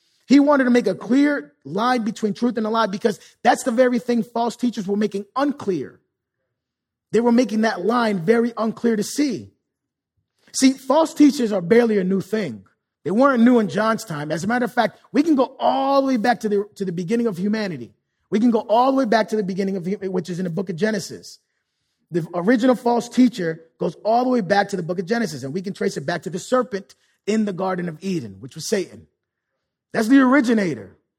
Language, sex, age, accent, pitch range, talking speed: English, male, 30-49, American, 190-240 Hz, 225 wpm